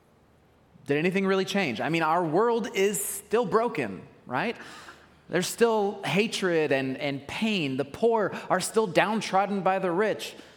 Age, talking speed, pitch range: 30-49, 150 wpm, 160-220 Hz